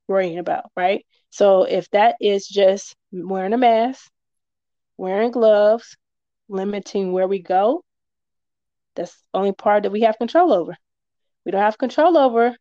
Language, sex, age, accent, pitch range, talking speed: English, female, 20-39, American, 195-235 Hz, 150 wpm